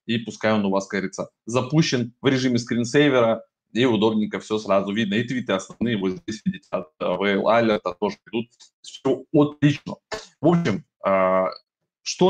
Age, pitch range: 20-39, 105-145 Hz